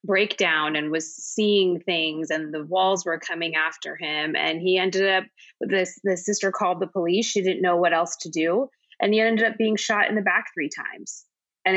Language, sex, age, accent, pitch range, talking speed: English, female, 20-39, American, 180-210 Hz, 215 wpm